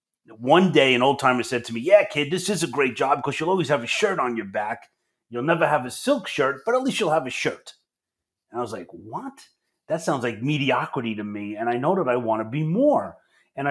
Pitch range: 120-160 Hz